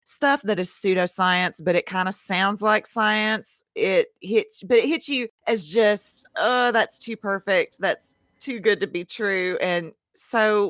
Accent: American